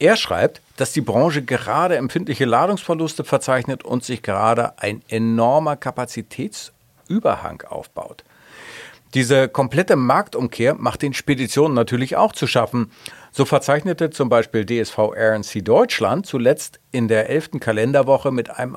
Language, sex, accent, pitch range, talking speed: German, male, German, 110-140 Hz, 130 wpm